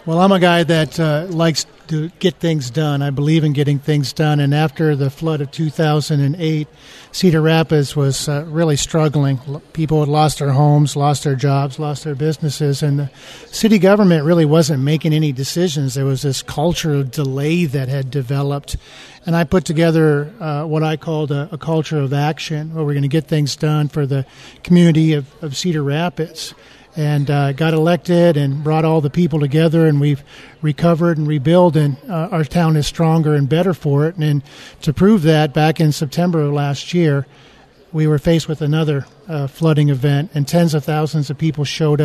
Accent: American